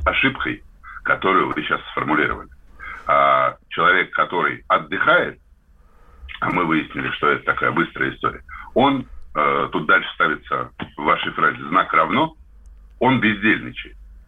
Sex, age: male, 50-69